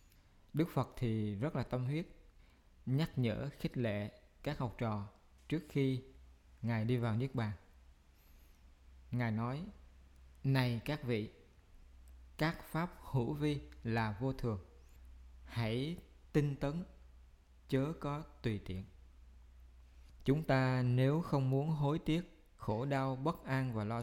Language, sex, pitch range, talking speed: Vietnamese, male, 95-130 Hz, 130 wpm